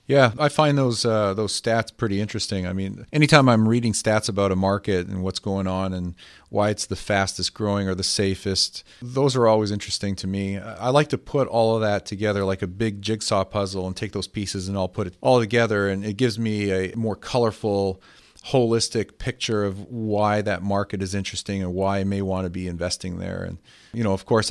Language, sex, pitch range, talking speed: English, male, 100-115 Hz, 220 wpm